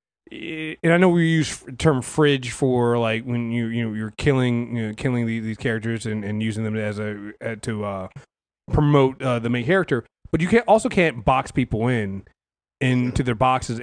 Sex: male